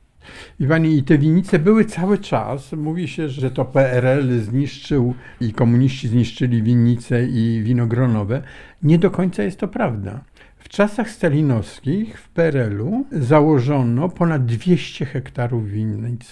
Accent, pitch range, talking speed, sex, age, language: native, 110-140 Hz, 125 wpm, male, 50-69, Polish